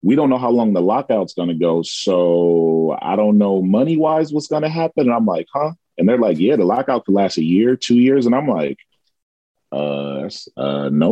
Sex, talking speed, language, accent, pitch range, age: male, 215 wpm, English, American, 95-135 Hz, 30-49